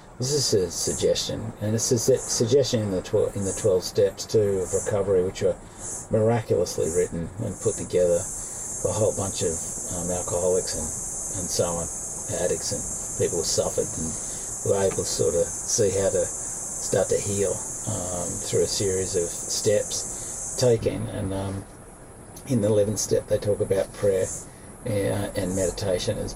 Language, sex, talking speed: English, male, 170 wpm